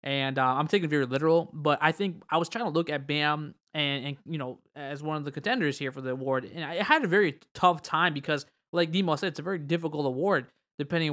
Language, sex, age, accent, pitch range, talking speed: English, male, 20-39, American, 140-170 Hz, 255 wpm